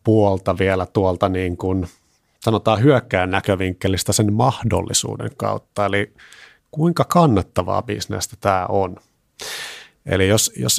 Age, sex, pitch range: 30-49, male, 90-115 Hz